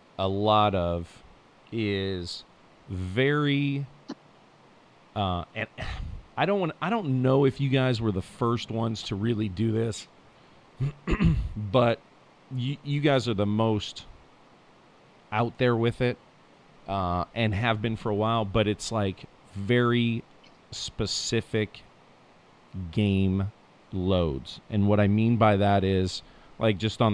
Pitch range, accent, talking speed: 95-130 Hz, American, 130 wpm